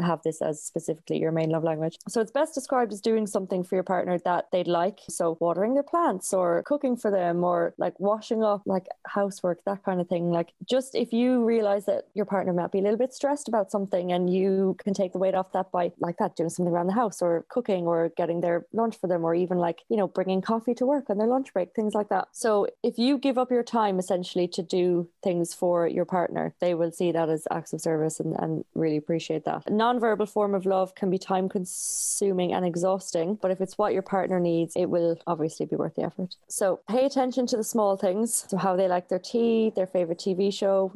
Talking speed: 240 wpm